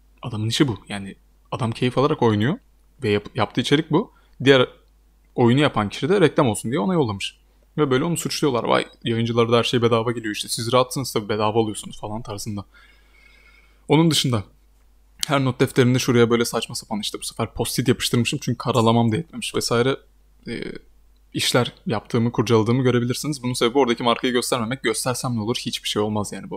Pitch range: 105-125 Hz